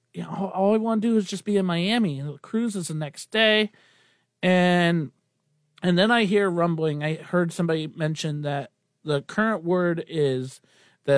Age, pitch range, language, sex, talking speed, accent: 40-59, 150-190 Hz, English, male, 190 wpm, American